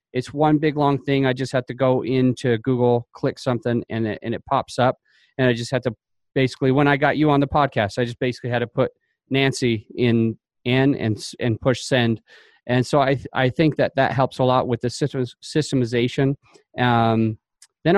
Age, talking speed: 30-49, 205 wpm